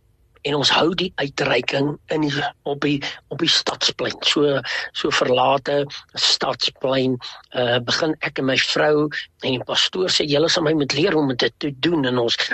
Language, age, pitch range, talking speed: English, 60-79, 140-180 Hz, 180 wpm